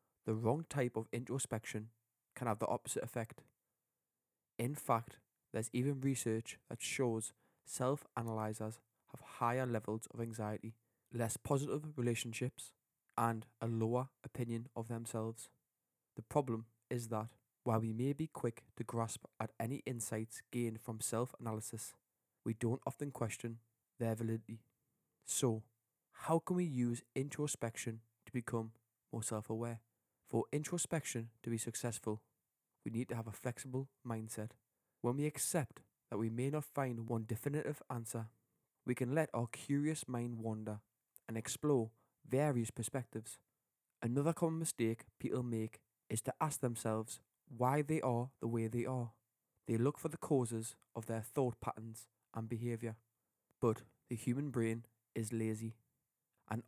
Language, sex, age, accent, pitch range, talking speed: English, male, 20-39, British, 115-130 Hz, 140 wpm